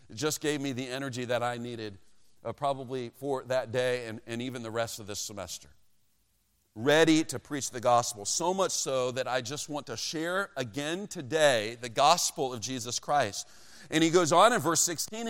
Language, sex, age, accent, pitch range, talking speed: English, male, 40-59, American, 135-190 Hz, 195 wpm